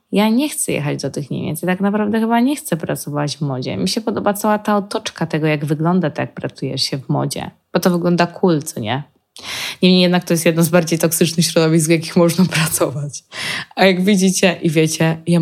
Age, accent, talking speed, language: 20-39, native, 220 wpm, Polish